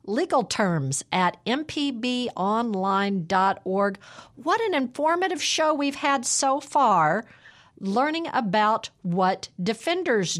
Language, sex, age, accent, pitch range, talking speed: English, female, 50-69, American, 185-250 Hz, 90 wpm